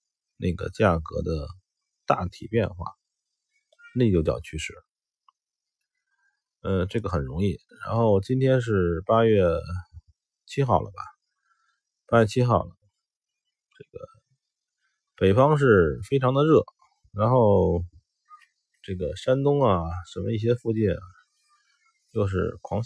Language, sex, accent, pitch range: Chinese, male, native, 95-130 Hz